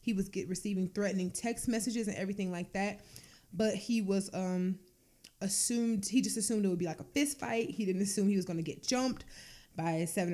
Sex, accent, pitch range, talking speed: female, American, 180-225 Hz, 210 wpm